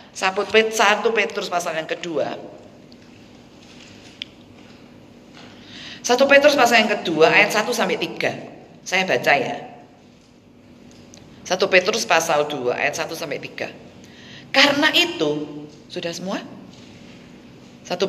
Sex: female